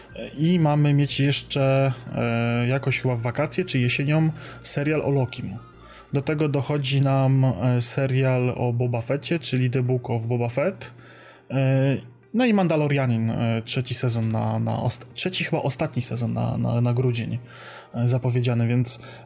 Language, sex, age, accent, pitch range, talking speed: Polish, male, 20-39, native, 120-140 Hz, 135 wpm